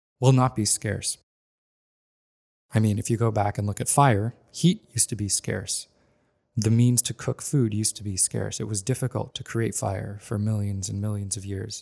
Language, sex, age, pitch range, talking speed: English, male, 20-39, 105-120 Hz, 205 wpm